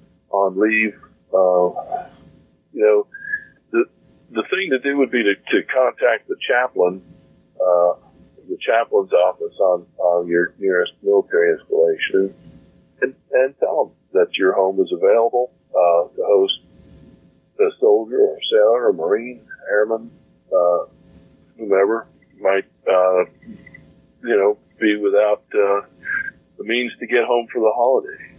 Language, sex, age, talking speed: English, male, 50-69, 135 wpm